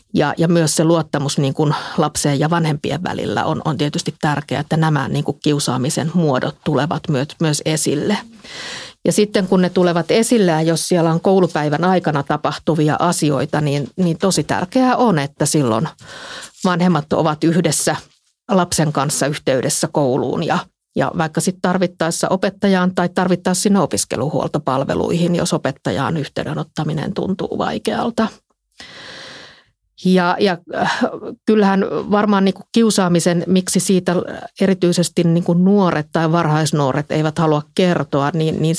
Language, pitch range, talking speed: Finnish, 150-180 Hz, 135 wpm